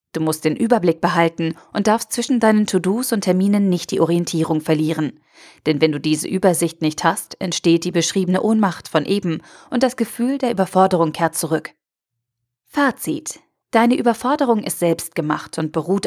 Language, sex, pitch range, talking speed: German, female, 165-215 Hz, 160 wpm